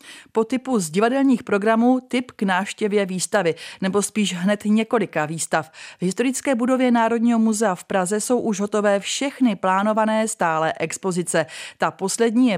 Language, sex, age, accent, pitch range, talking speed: Czech, female, 30-49, native, 175-225 Hz, 150 wpm